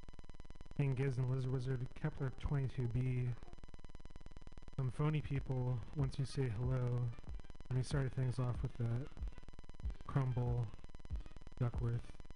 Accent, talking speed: American, 105 wpm